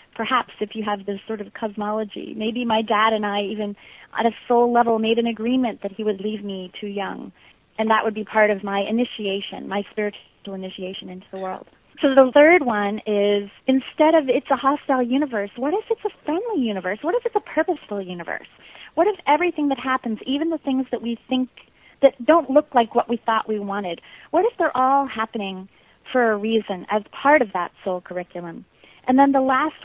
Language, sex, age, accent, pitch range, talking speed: English, female, 30-49, American, 205-265 Hz, 205 wpm